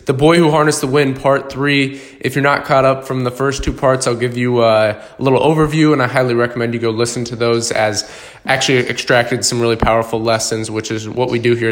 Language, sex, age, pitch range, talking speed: English, male, 20-39, 115-135 Hz, 235 wpm